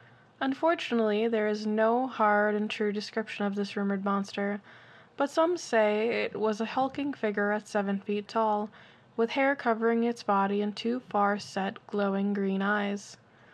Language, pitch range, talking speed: English, 205-240 Hz, 155 wpm